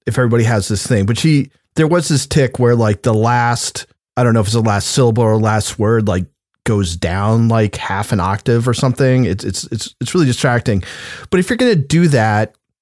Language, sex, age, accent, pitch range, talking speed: English, male, 30-49, American, 110-150 Hz, 225 wpm